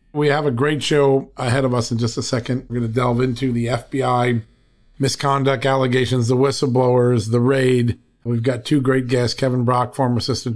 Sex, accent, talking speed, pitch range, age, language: male, American, 195 wpm, 120-140 Hz, 40-59, English